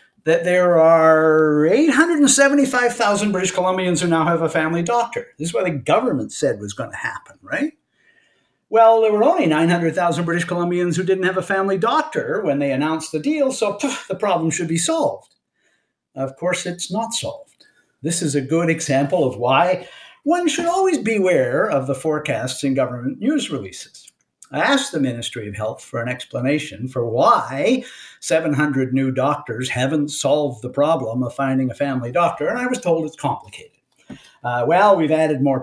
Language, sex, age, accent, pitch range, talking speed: English, male, 50-69, American, 135-195 Hz, 175 wpm